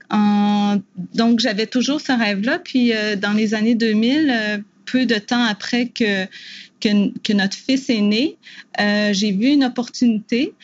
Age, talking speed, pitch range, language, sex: 30-49, 145 wpm, 205-245 Hz, English, female